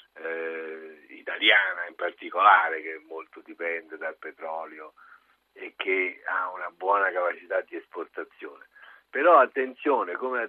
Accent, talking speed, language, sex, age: native, 120 wpm, Italian, male, 50-69